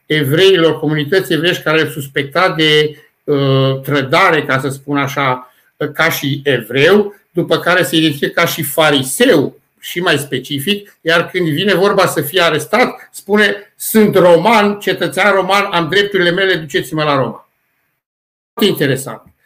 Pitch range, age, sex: 145-180 Hz, 60-79, male